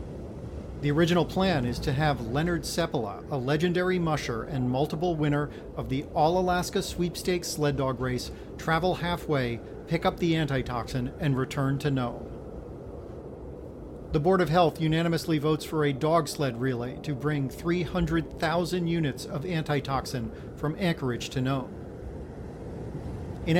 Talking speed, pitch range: 135 wpm, 130-165 Hz